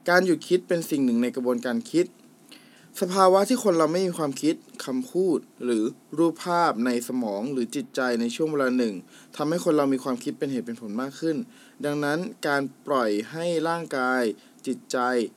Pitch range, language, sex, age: 125-185 Hz, Thai, male, 20-39